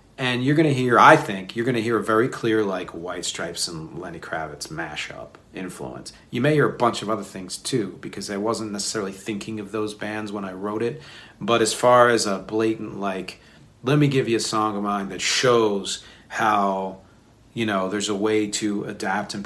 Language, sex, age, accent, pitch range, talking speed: English, male, 40-59, American, 100-115 Hz, 205 wpm